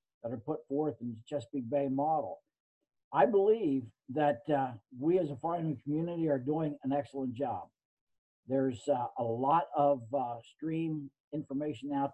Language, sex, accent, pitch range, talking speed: English, male, American, 130-155 Hz, 160 wpm